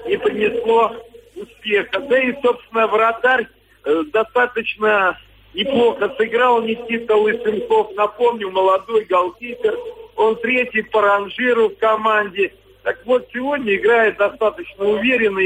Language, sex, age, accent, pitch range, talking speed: Russian, male, 50-69, native, 215-265 Hz, 110 wpm